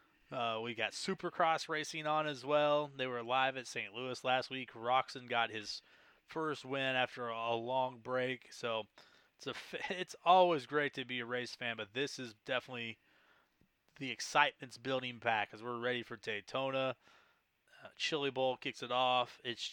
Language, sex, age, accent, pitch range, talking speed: English, male, 30-49, American, 120-170 Hz, 175 wpm